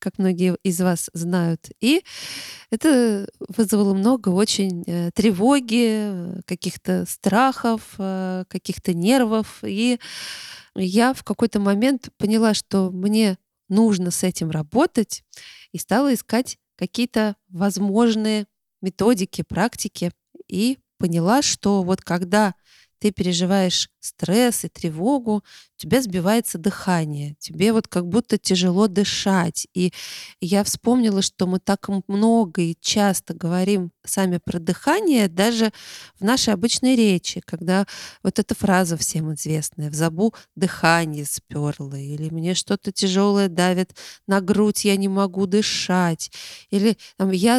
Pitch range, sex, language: 180-220 Hz, female, Russian